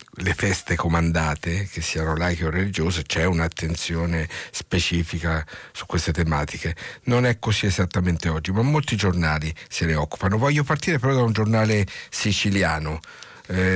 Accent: native